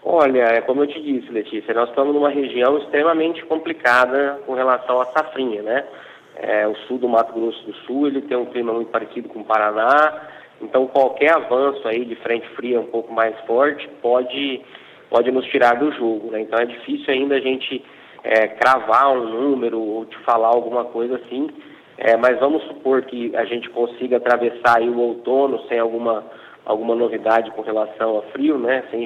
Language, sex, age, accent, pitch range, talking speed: Portuguese, male, 20-39, Brazilian, 115-130 Hz, 180 wpm